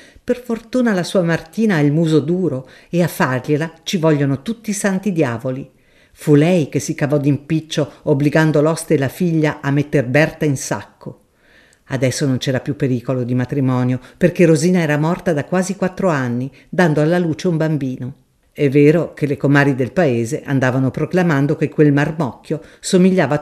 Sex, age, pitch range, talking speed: female, 50-69, 135-185 Hz, 170 wpm